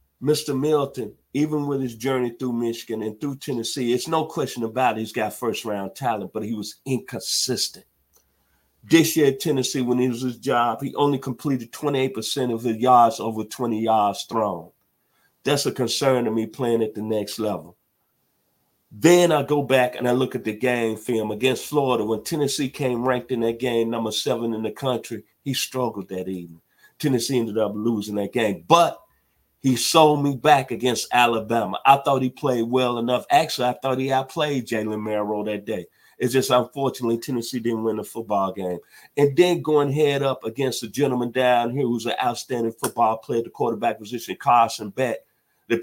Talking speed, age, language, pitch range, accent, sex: 185 wpm, 50-69, English, 110-135 Hz, American, male